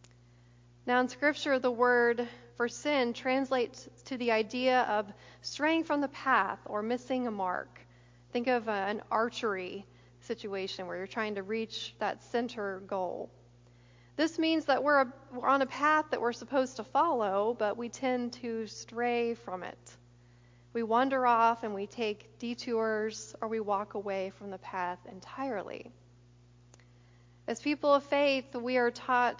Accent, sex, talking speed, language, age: American, female, 150 wpm, English, 40-59